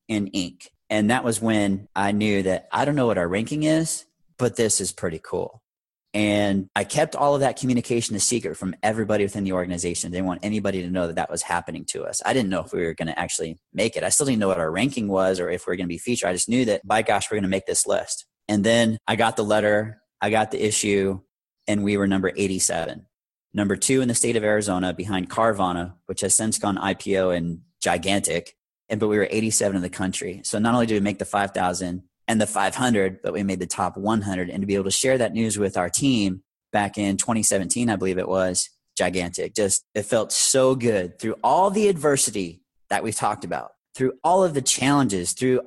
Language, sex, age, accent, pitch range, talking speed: English, male, 30-49, American, 95-120 Hz, 235 wpm